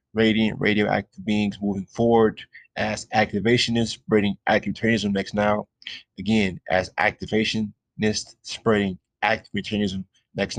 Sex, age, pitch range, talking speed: male, 20-39, 100-110 Hz, 100 wpm